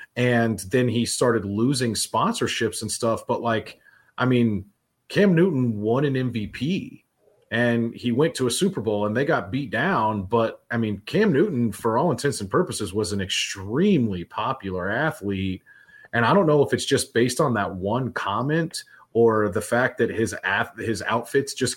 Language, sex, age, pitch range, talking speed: English, male, 30-49, 105-125 Hz, 175 wpm